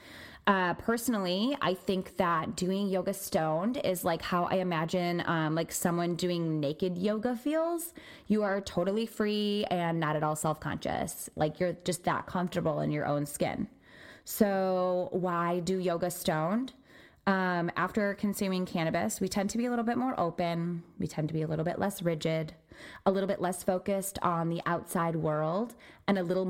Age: 20-39